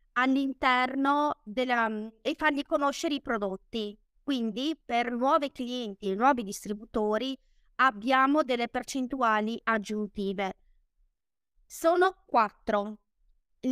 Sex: female